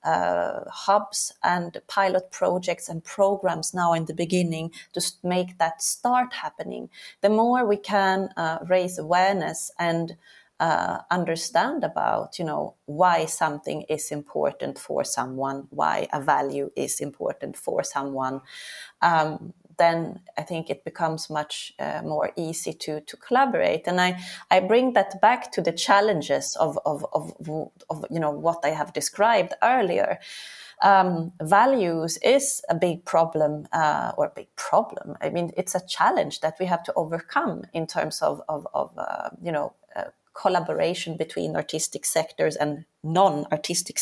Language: English